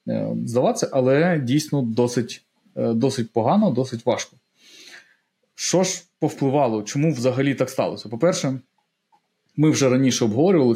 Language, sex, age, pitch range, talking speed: Ukrainian, male, 20-39, 120-155 Hz, 110 wpm